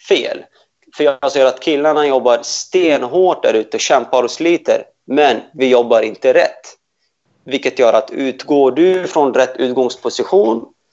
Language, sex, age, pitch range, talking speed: Swedish, male, 30-49, 125-160 Hz, 150 wpm